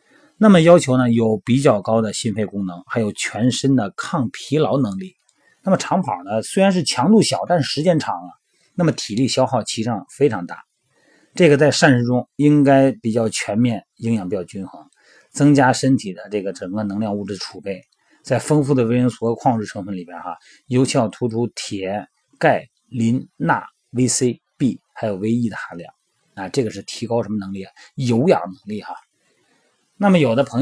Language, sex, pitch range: Chinese, male, 115-145 Hz